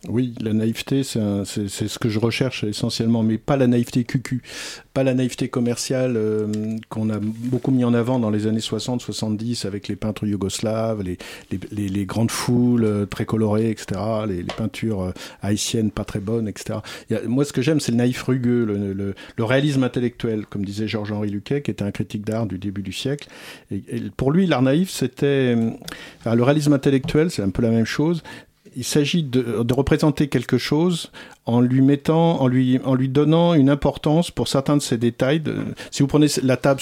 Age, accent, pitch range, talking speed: 50-69, French, 110-140 Hz, 205 wpm